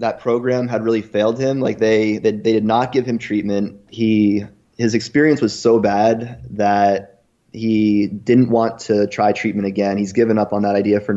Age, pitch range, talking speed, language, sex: 20-39, 105-120 Hz, 195 wpm, English, male